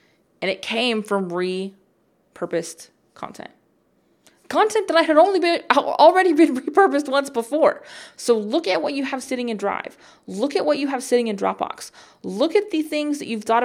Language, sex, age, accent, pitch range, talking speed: English, female, 20-39, American, 190-275 Hz, 180 wpm